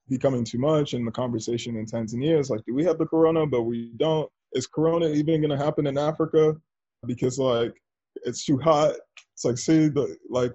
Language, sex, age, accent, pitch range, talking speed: English, male, 20-39, American, 115-145 Hz, 200 wpm